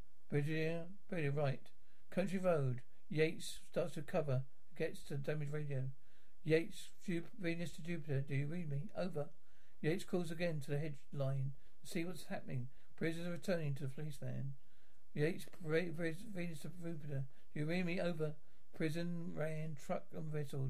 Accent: British